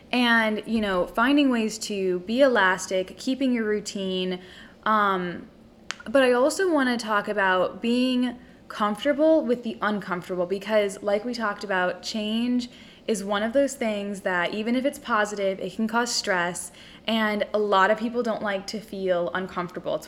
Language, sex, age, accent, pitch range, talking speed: English, female, 10-29, American, 185-240 Hz, 165 wpm